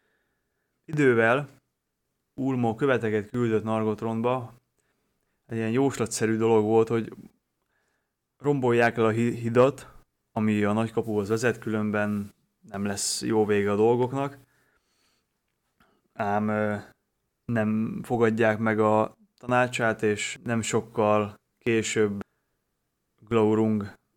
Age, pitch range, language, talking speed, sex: 20-39, 105-115 Hz, Hungarian, 90 wpm, male